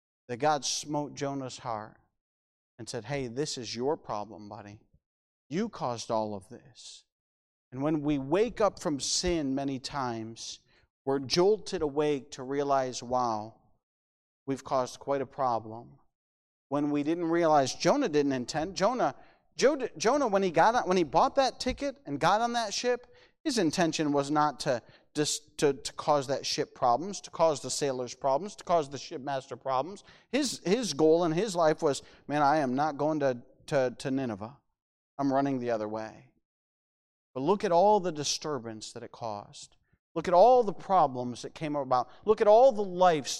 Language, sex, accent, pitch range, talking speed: English, male, American, 120-165 Hz, 175 wpm